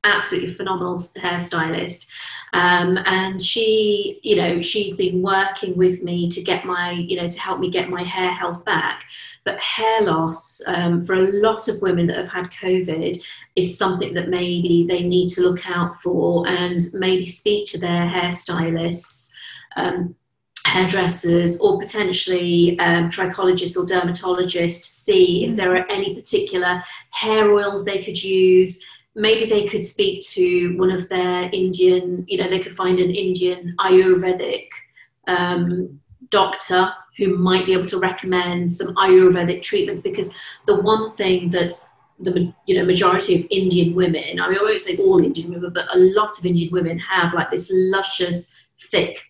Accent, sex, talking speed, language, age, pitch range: British, female, 160 wpm, English, 30-49, 175-195 Hz